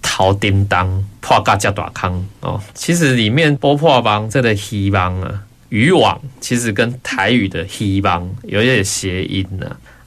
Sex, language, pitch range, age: male, Chinese, 95-125 Hz, 20-39